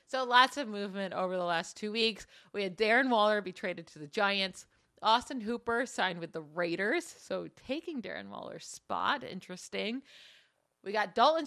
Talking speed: 175 wpm